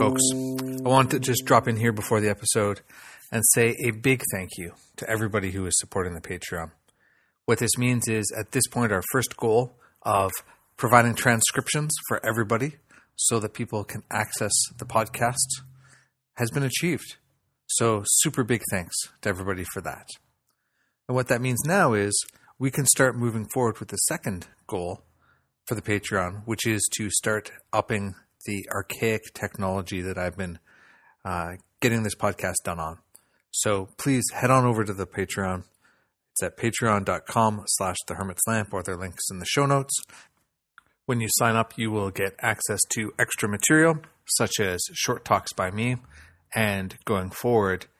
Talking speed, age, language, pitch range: 165 wpm, 30-49, English, 95-125 Hz